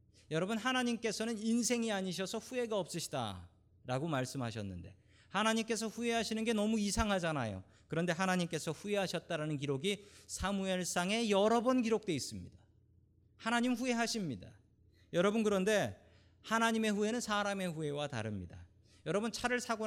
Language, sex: Korean, male